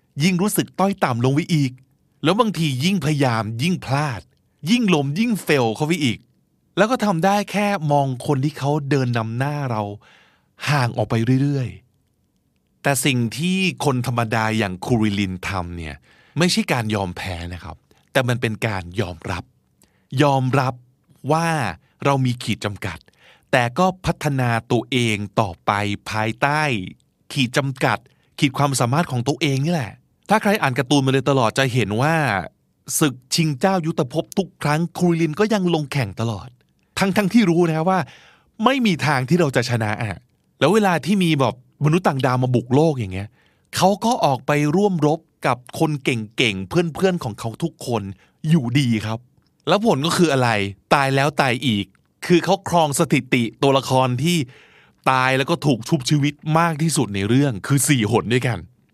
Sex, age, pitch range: male, 20-39, 120-165 Hz